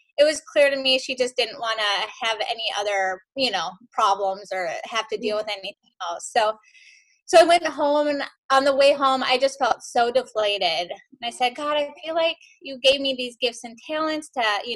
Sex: female